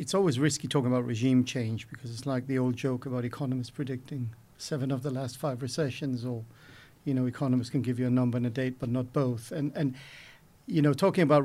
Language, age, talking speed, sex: English, 50-69, 225 wpm, male